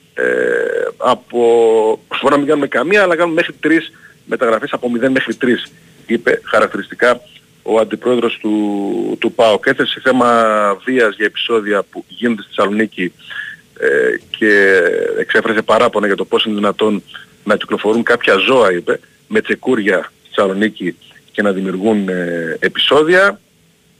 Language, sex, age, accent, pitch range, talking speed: Greek, male, 40-59, native, 110-175 Hz, 135 wpm